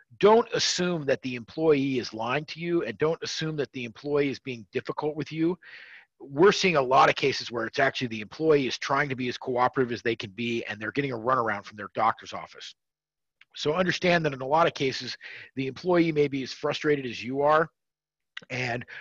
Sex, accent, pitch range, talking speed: male, American, 130-165 Hz, 215 wpm